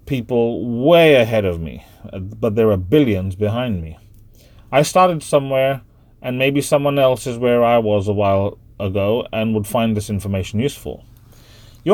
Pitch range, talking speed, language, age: 105-135 Hz, 160 wpm, English, 30-49